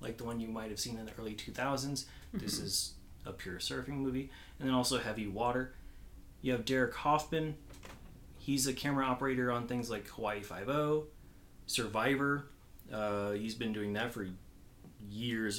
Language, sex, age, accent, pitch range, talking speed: English, male, 30-49, American, 95-135 Hz, 175 wpm